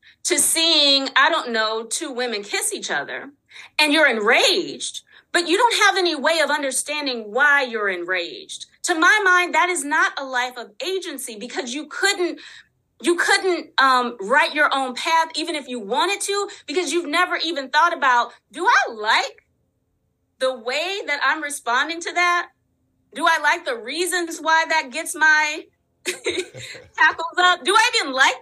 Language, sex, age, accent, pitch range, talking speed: English, female, 30-49, American, 255-355 Hz, 170 wpm